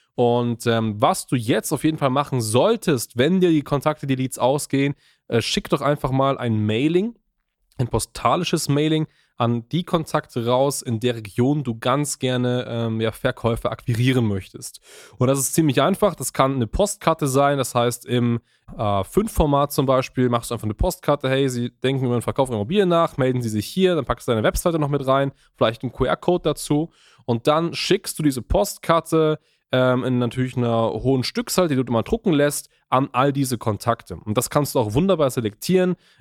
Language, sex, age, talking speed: German, male, 20-39, 190 wpm